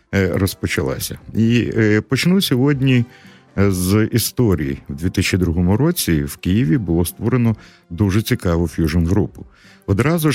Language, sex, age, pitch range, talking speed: Russian, male, 50-69, 85-110 Hz, 100 wpm